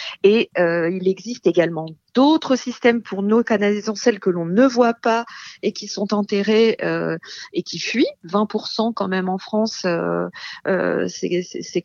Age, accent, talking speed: 40-59, French, 165 wpm